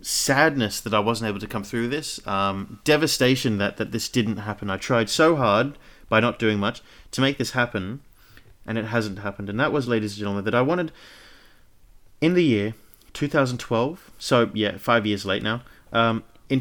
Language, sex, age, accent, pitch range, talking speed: English, male, 30-49, Australian, 105-135 Hz, 195 wpm